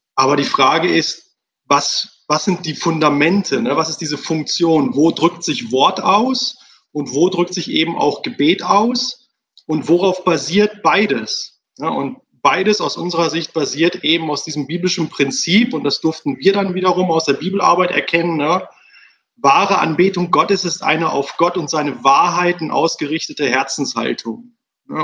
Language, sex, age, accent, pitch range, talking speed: German, male, 30-49, German, 145-185 Hz, 160 wpm